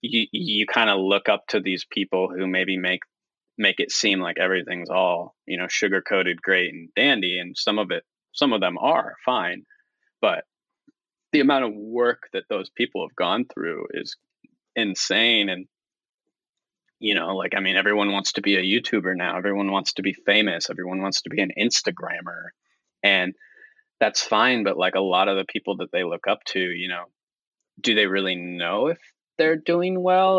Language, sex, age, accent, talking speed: English, male, 20-39, American, 190 wpm